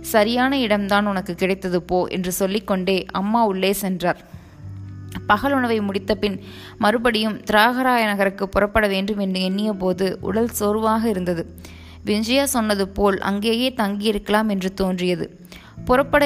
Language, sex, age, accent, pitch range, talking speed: Tamil, female, 20-39, native, 185-220 Hz, 115 wpm